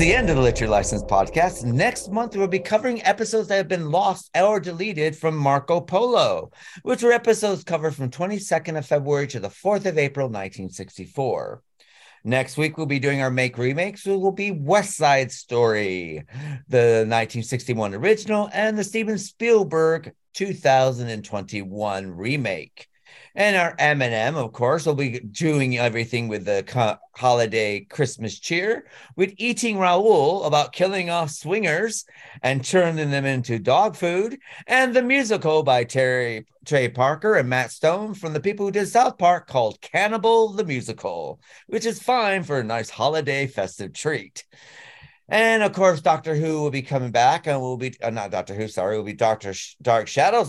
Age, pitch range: 50-69, 120-190 Hz